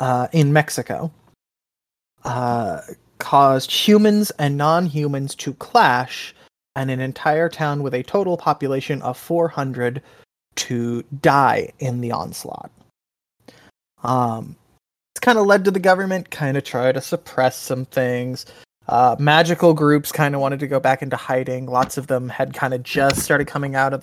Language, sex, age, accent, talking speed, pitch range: English, male, 20-39, American, 155 wpm, 130-175 Hz